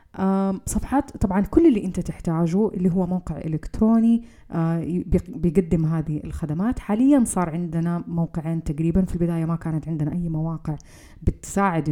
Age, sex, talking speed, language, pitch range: 30-49, female, 130 wpm, Arabic, 160-195 Hz